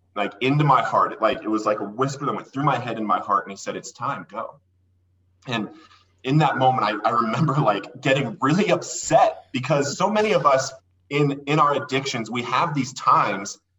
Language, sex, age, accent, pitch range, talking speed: English, male, 30-49, American, 110-165 Hz, 210 wpm